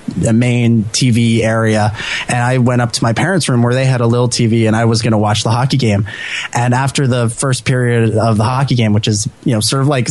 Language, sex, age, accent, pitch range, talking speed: English, male, 20-39, American, 115-140 Hz, 255 wpm